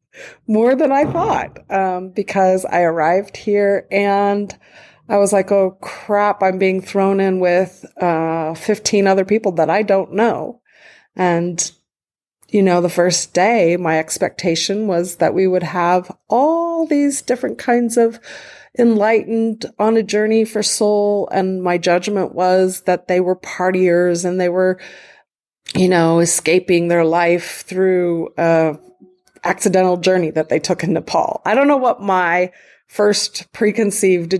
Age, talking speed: 40-59, 150 wpm